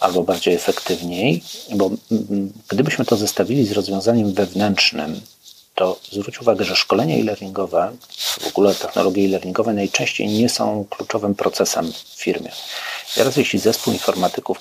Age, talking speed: 40-59, 125 wpm